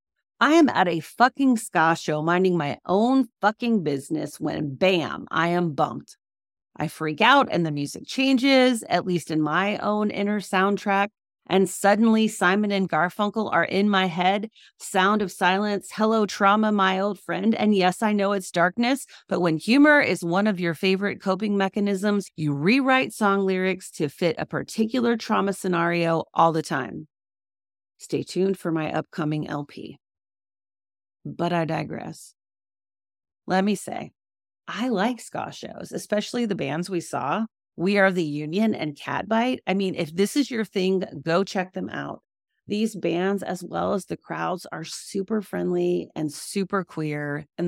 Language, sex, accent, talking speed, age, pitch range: English, female, American, 165 wpm, 40-59, 160-210 Hz